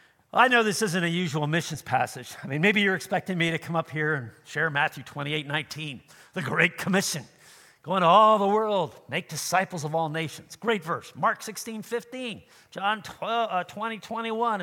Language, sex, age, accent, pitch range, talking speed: English, male, 50-69, American, 170-235 Hz, 185 wpm